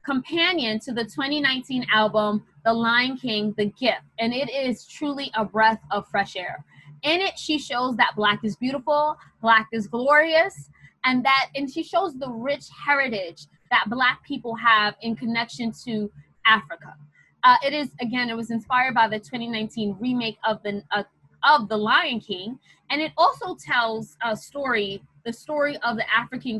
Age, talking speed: 20-39, 170 wpm